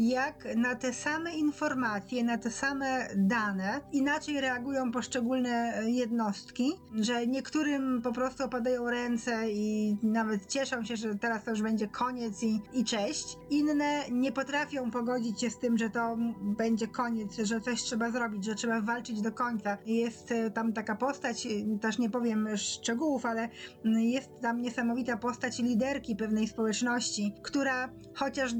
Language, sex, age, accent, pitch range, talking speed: Polish, female, 20-39, native, 230-265 Hz, 145 wpm